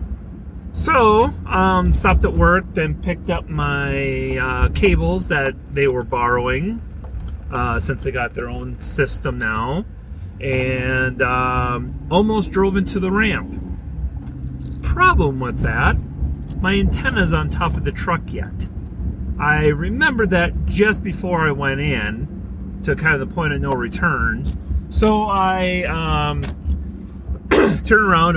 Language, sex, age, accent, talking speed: English, male, 30-49, American, 130 wpm